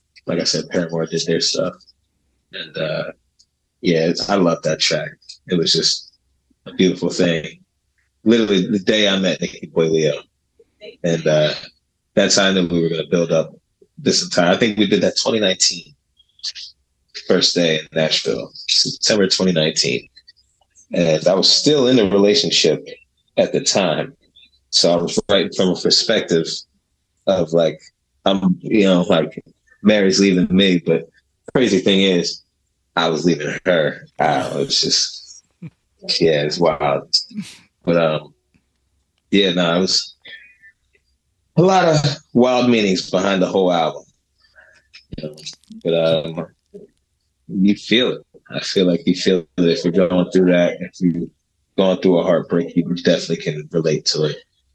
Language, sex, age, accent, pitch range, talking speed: English, male, 30-49, American, 75-95 Hz, 150 wpm